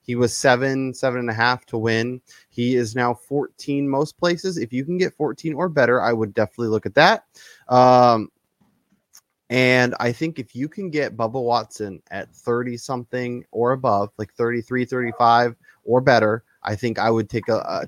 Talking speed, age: 180 wpm, 20-39